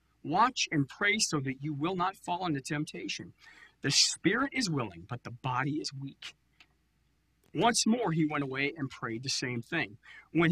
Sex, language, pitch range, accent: male, English, 130-170 Hz, American